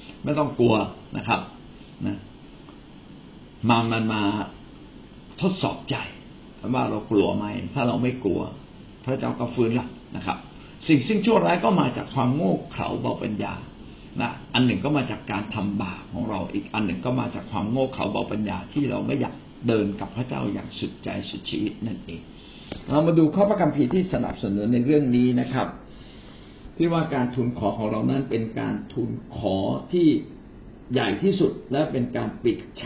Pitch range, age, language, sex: 110-150 Hz, 60-79, Thai, male